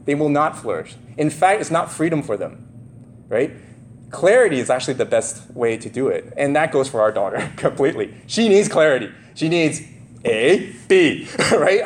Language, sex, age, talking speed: English, male, 30-49, 180 wpm